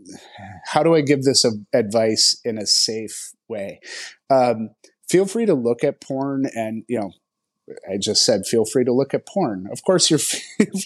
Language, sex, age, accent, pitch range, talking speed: English, male, 30-49, American, 110-150 Hz, 180 wpm